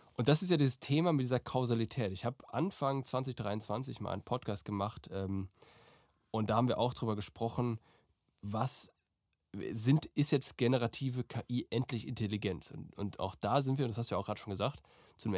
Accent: German